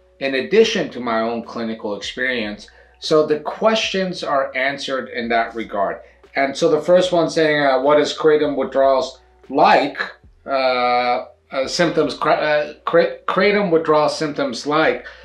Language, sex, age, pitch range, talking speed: English, male, 40-59, 130-175 Hz, 140 wpm